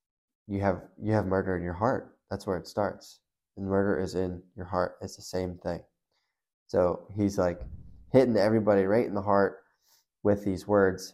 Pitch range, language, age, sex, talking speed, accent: 90-105 Hz, English, 20-39, male, 185 wpm, American